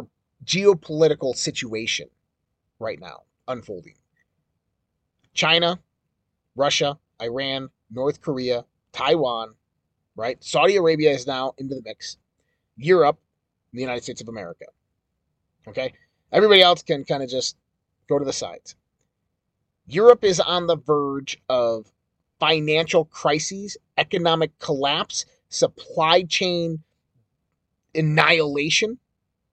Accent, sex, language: American, male, English